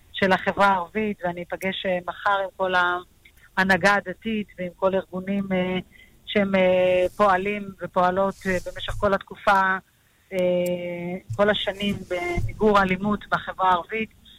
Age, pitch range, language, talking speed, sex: 30-49, 185-205 Hz, Hebrew, 105 wpm, female